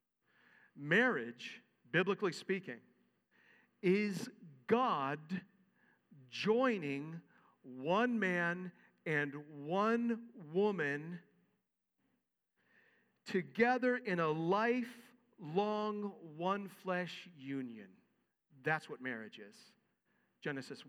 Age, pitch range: 50-69, 165-225 Hz